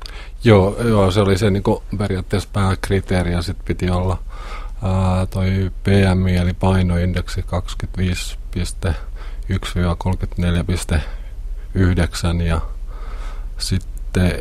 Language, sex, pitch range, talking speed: Finnish, male, 85-95 Hz, 80 wpm